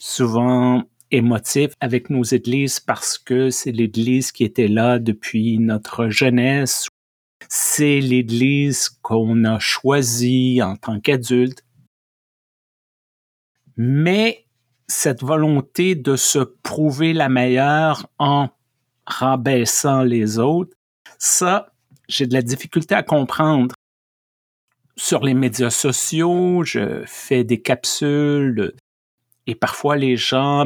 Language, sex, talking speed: French, male, 105 wpm